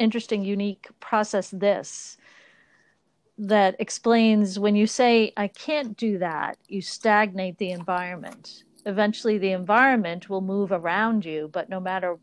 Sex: female